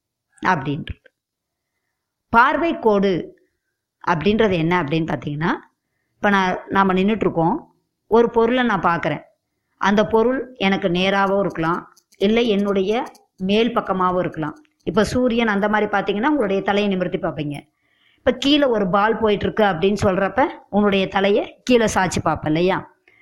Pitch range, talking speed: 185-235 Hz, 125 wpm